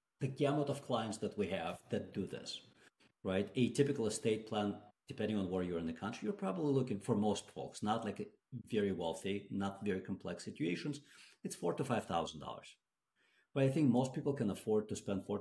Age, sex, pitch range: 40-59, male, 95-120 Hz